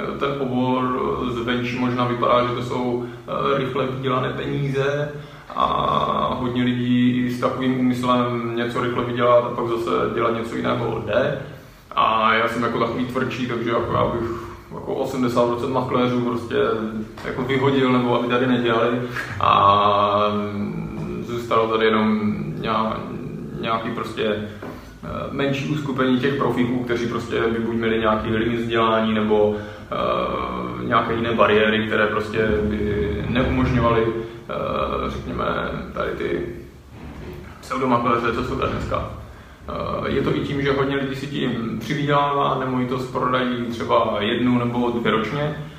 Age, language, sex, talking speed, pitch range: 20-39, Czech, male, 130 wpm, 110-125 Hz